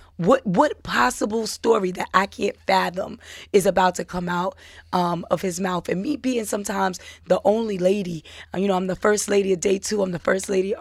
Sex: female